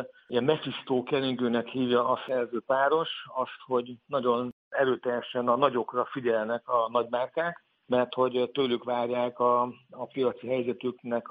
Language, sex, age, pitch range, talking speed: Hungarian, male, 60-79, 120-130 Hz, 120 wpm